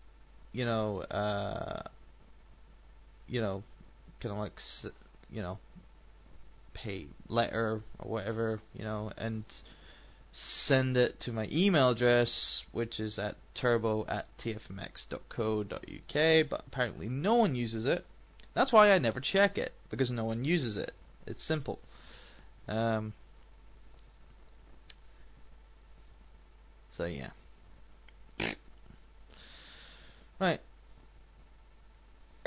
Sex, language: male, English